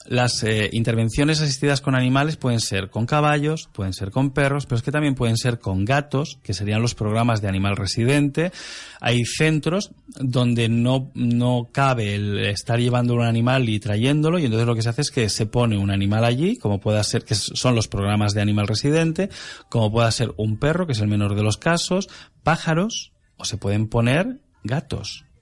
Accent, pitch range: Spanish, 110-140 Hz